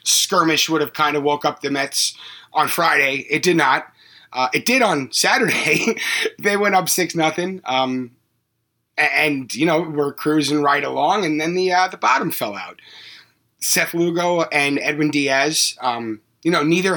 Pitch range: 130-175 Hz